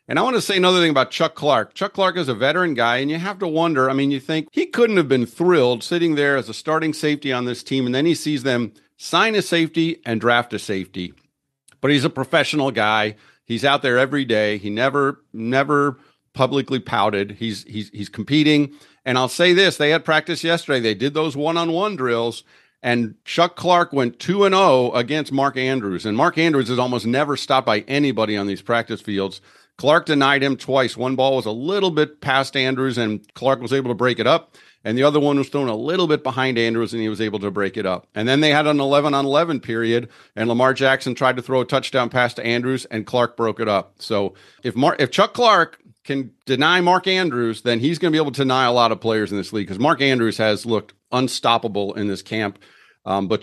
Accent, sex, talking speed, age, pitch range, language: American, male, 230 wpm, 50-69, 115-150 Hz, English